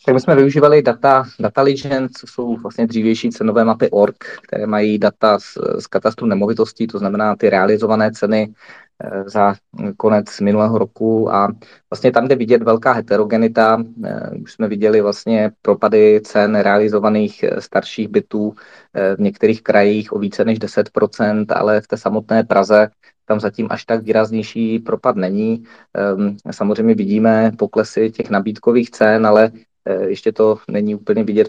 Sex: male